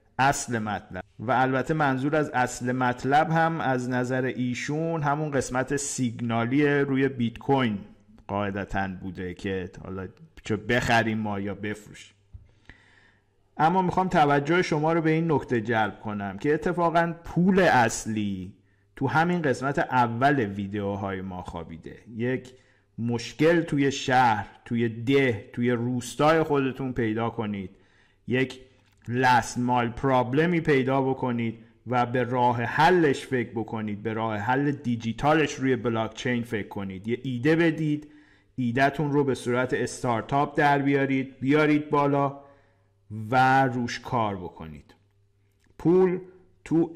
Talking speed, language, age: 125 wpm, Persian, 50-69